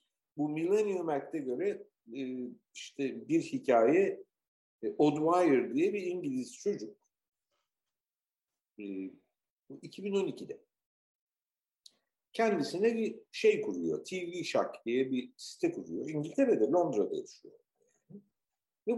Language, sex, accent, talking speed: Turkish, male, native, 90 wpm